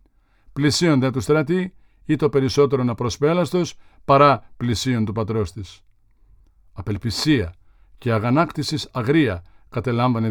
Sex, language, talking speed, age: male, Greek, 95 wpm, 50-69